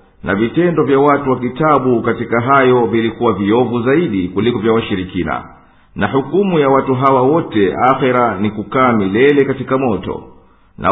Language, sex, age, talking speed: English, male, 50-69, 150 wpm